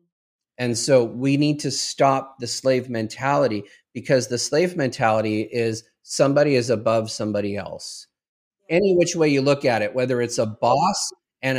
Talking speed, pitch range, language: 160 wpm, 120-155 Hz, English